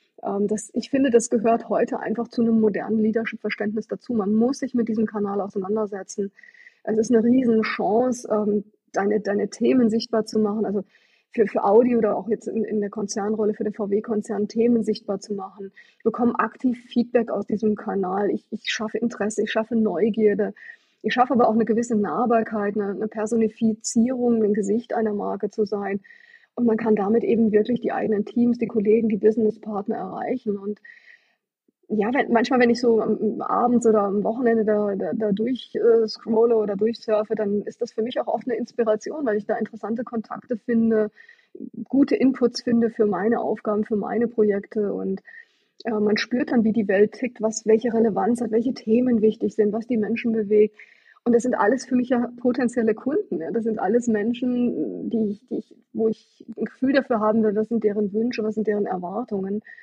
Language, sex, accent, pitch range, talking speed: German, female, German, 210-235 Hz, 190 wpm